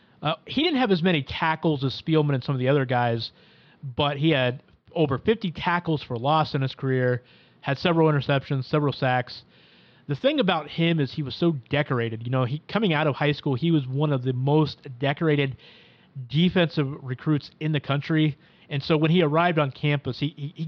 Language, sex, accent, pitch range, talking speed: English, male, American, 135-160 Hz, 195 wpm